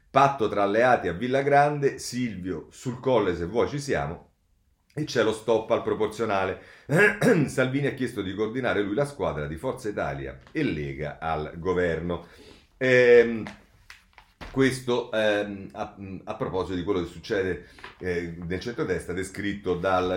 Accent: native